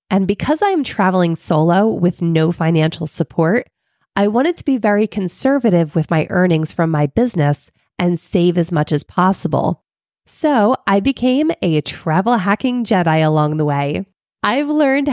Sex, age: female, 20-39